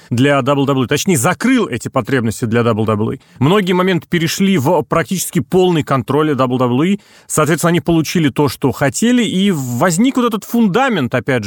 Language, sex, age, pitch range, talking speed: Russian, male, 30-49, 130-175 Hz, 145 wpm